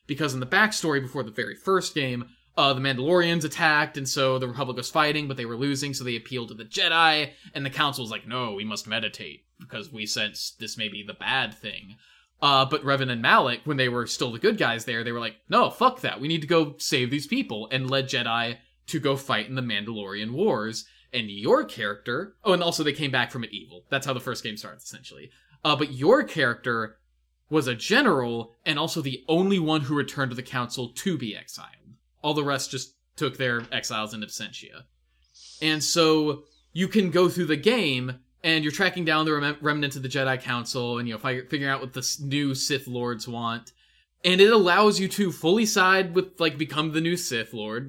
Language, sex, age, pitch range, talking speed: English, male, 20-39, 120-160 Hz, 220 wpm